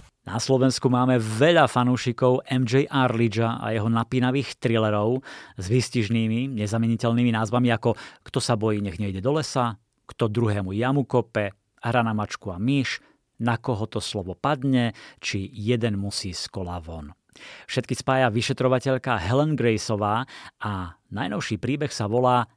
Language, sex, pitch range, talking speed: Slovak, male, 105-130 Hz, 140 wpm